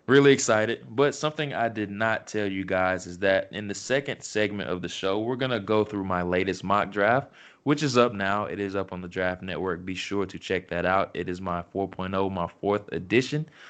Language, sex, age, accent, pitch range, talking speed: English, male, 20-39, American, 95-115 Hz, 230 wpm